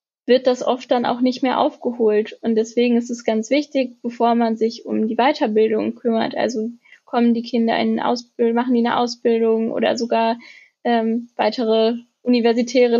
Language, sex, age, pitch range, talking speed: German, female, 10-29, 225-245 Hz, 165 wpm